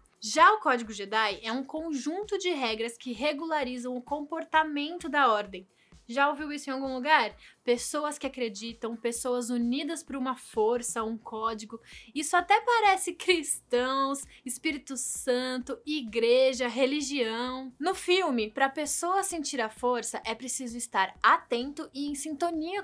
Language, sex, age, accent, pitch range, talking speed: Portuguese, female, 10-29, Brazilian, 235-315 Hz, 140 wpm